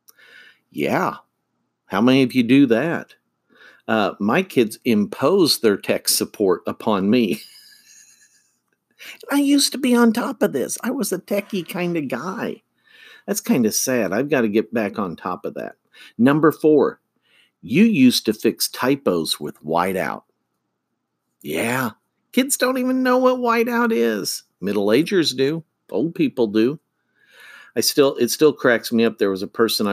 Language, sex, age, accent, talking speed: English, male, 50-69, American, 155 wpm